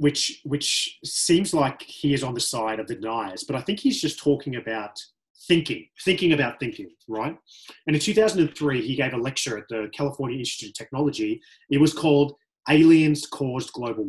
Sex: male